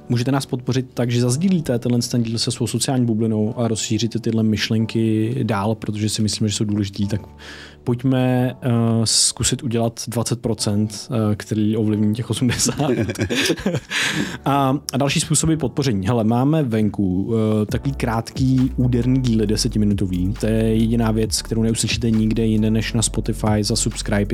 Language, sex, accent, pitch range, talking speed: Czech, male, native, 105-120 Hz, 155 wpm